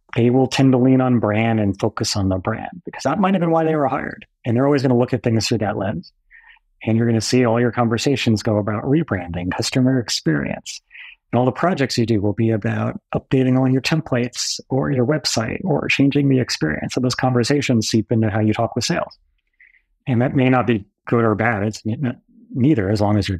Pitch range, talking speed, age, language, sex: 105-130 Hz, 230 wpm, 30-49, English, male